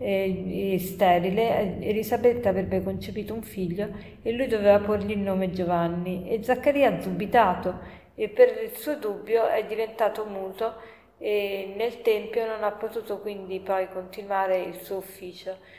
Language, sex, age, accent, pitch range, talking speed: Italian, female, 40-59, native, 190-225 Hz, 145 wpm